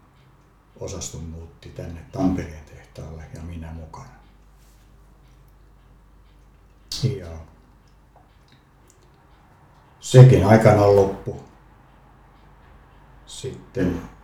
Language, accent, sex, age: Finnish, native, male, 60-79